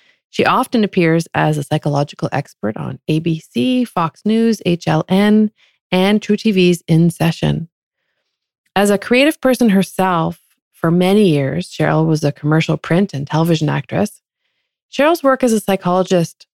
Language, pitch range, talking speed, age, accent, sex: English, 155-195 Hz, 135 wpm, 30-49, American, female